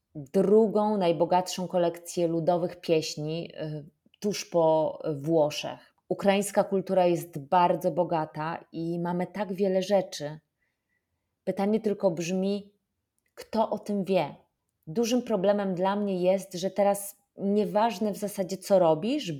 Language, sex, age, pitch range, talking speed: Polish, female, 30-49, 170-205 Hz, 115 wpm